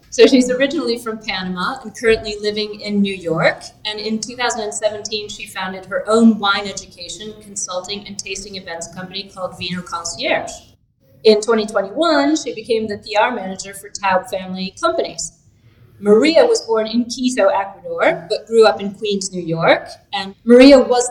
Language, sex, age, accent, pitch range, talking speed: English, female, 30-49, American, 190-220 Hz, 155 wpm